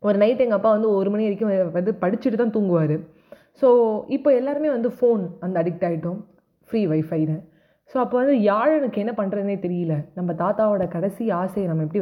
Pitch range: 170-215 Hz